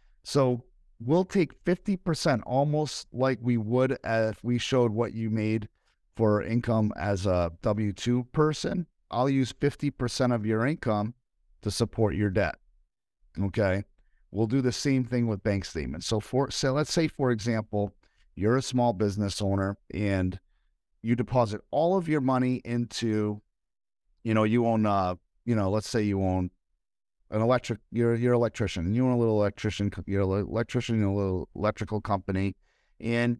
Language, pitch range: English, 95-120 Hz